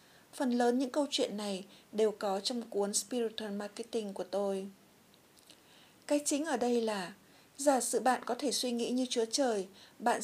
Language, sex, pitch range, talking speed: Vietnamese, female, 220-255 Hz, 175 wpm